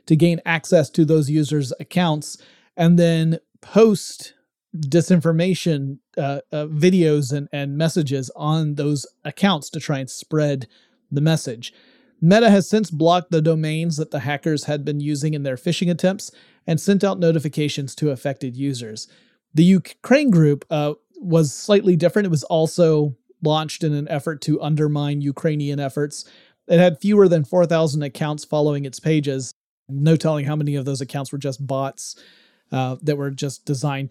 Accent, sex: American, male